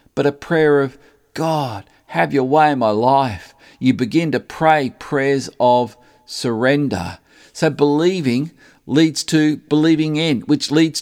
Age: 50-69